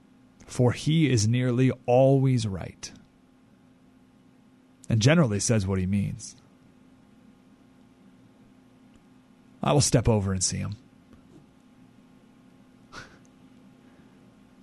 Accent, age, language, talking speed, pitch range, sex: American, 30-49, English, 80 wpm, 120-170 Hz, male